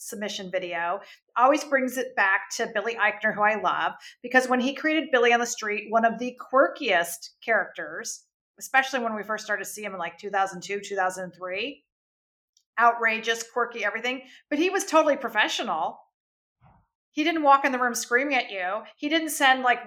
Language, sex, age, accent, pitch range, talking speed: English, female, 40-59, American, 200-250 Hz, 175 wpm